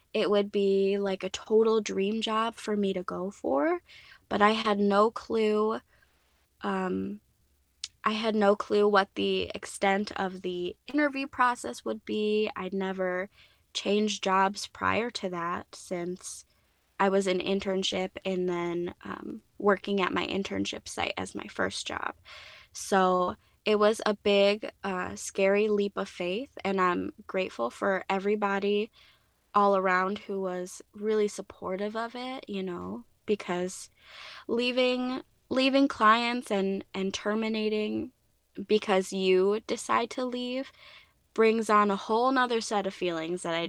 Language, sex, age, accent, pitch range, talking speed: English, female, 20-39, American, 185-215 Hz, 140 wpm